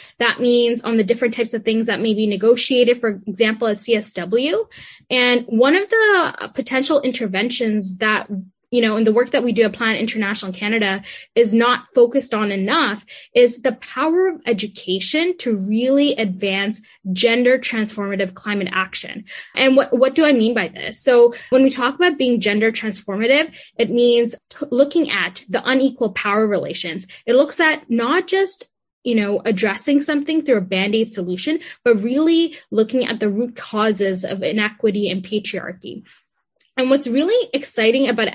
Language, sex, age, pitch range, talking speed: English, female, 10-29, 210-265 Hz, 165 wpm